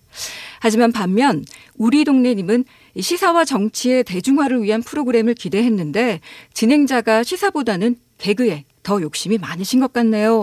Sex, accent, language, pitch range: female, native, Korean, 205-270 Hz